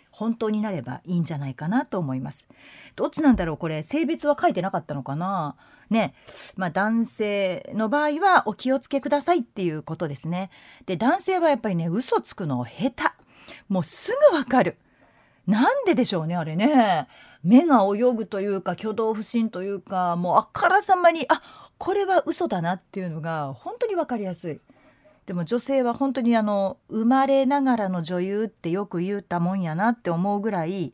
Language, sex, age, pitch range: Japanese, female, 40-59, 170-265 Hz